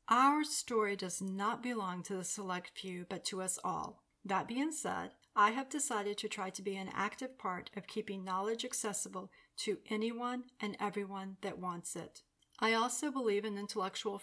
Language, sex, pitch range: English, female, 195-230 Hz